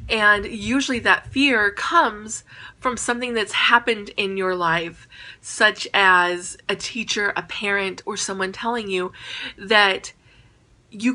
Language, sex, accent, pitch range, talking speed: English, female, American, 190-225 Hz, 130 wpm